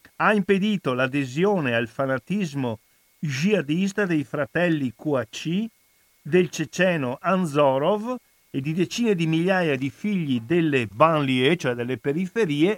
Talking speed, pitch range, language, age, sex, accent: 115 wpm, 120-165 Hz, Italian, 50-69, male, native